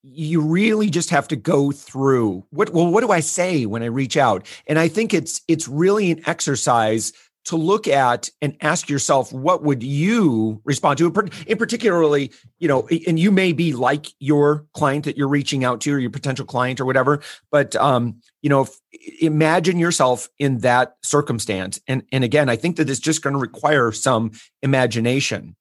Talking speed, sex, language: 185 wpm, male, English